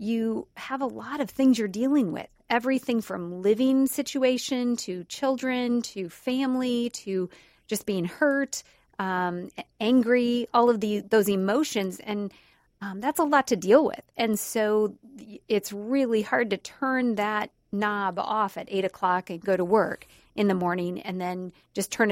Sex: female